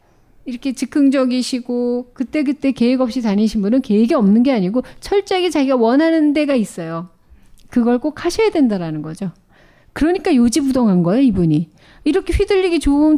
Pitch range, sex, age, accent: 215-300 Hz, female, 40-59, native